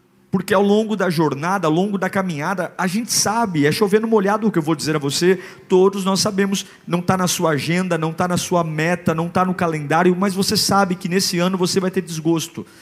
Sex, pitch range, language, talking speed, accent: male, 140-200 Hz, Portuguese, 230 wpm, Brazilian